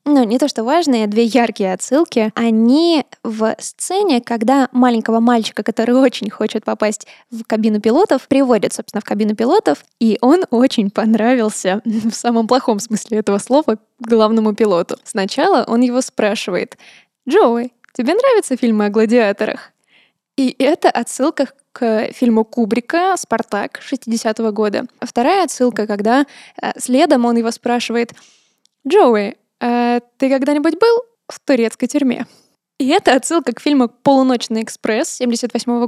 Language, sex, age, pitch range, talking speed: Russian, female, 10-29, 220-260 Hz, 135 wpm